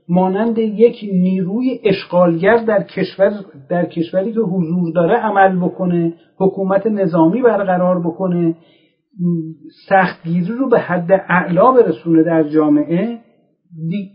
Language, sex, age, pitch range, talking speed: Persian, male, 50-69, 160-215 Hz, 110 wpm